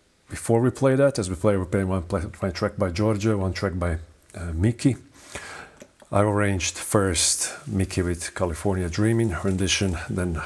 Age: 40-59